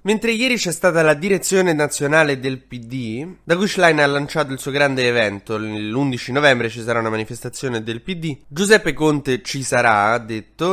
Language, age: Italian, 20-39